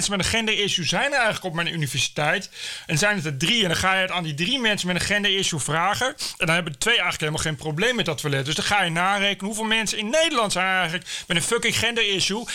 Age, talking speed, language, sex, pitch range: 40-59, 260 wpm, Dutch, male, 155-205 Hz